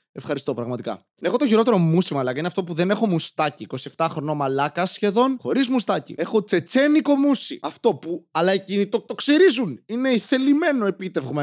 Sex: male